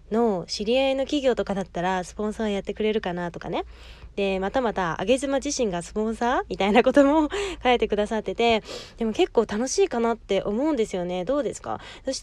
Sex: female